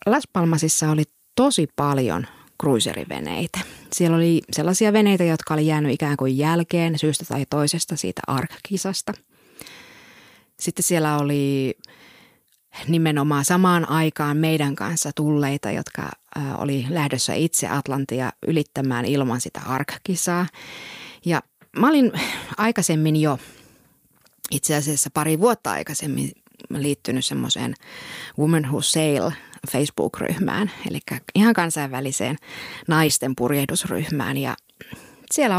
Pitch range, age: 140-180 Hz, 30-49